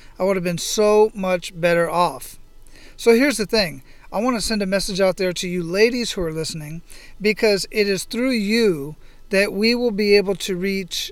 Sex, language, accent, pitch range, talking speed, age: male, English, American, 175-210 Hz, 205 wpm, 40-59